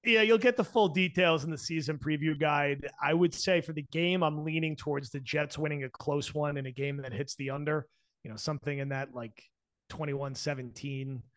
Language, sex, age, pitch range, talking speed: English, male, 30-49, 125-150 Hz, 210 wpm